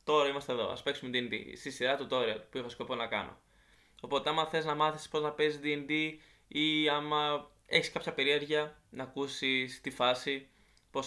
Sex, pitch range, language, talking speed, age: male, 125-150 Hz, Greek, 180 wpm, 20-39